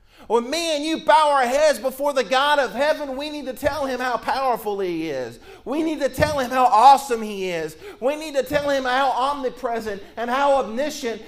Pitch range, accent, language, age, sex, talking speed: 155-245 Hz, American, English, 40-59, male, 215 wpm